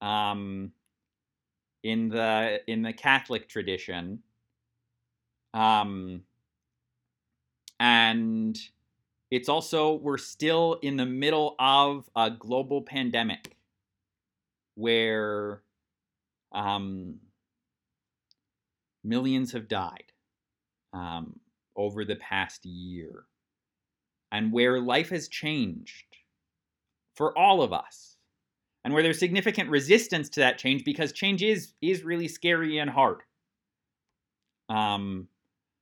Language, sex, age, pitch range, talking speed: English, male, 30-49, 100-140 Hz, 95 wpm